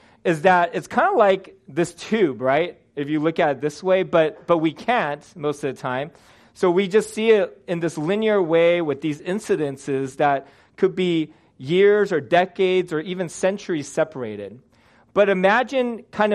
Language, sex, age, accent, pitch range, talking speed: English, male, 30-49, American, 145-185 Hz, 180 wpm